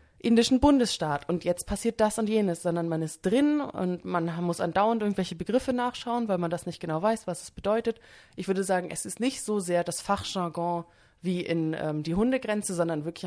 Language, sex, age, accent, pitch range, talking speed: English, female, 20-39, German, 160-200 Hz, 205 wpm